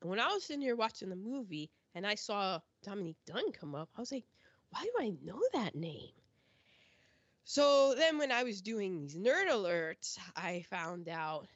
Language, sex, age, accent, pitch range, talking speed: English, female, 20-39, American, 165-250 Hz, 185 wpm